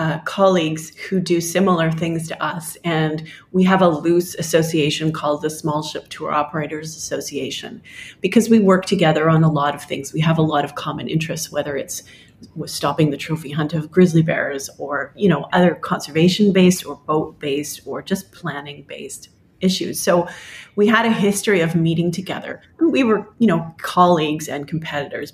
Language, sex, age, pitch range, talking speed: English, female, 30-49, 155-185 Hz, 180 wpm